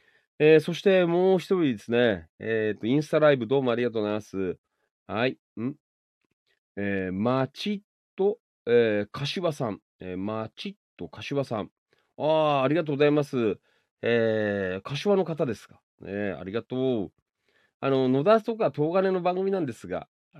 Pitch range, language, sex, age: 110-160 Hz, Japanese, male, 40-59